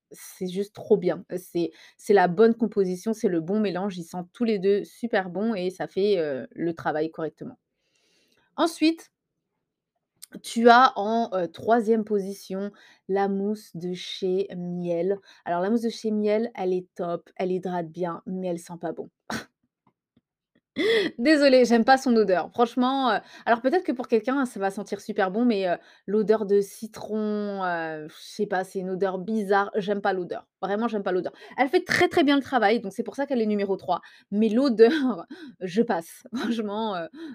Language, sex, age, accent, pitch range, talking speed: French, female, 20-39, French, 185-230 Hz, 180 wpm